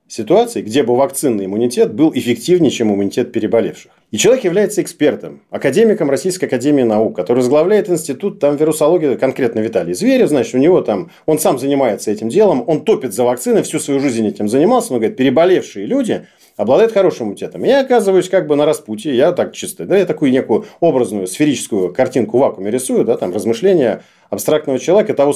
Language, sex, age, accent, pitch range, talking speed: Russian, male, 40-59, native, 120-185 Hz, 180 wpm